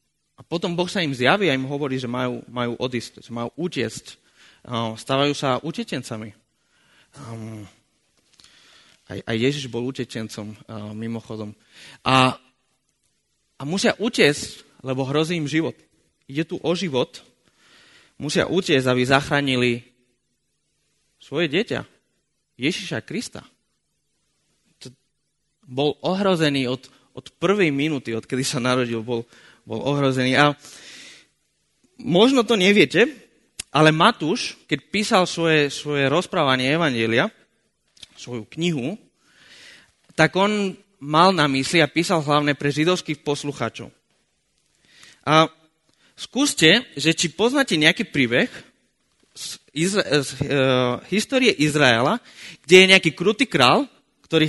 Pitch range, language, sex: 125-175 Hz, Slovak, male